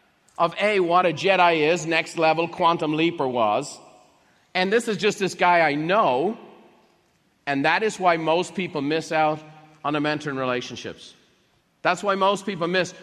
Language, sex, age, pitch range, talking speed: English, male, 40-59, 165-215 Hz, 165 wpm